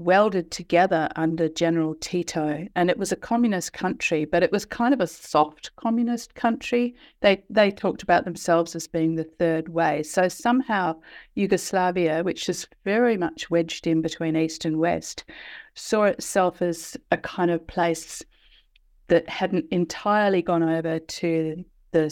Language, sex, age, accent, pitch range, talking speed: English, female, 50-69, Australian, 165-190 Hz, 155 wpm